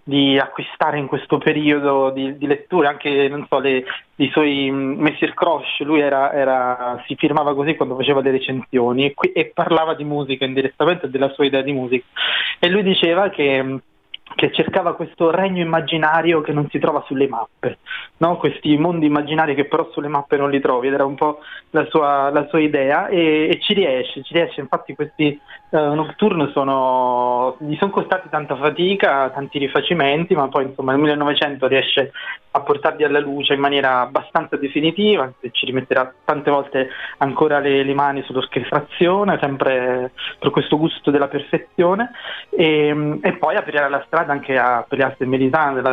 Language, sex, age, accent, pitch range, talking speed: Italian, male, 20-39, native, 135-155 Hz, 170 wpm